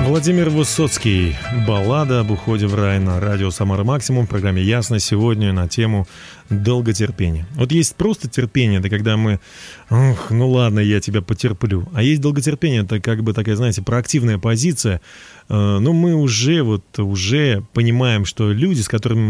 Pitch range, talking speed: 105-140 Hz, 150 wpm